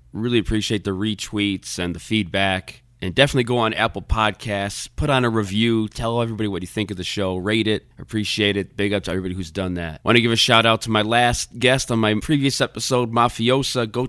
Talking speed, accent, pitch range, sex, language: 220 wpm, American, 95-115 Hz, male, English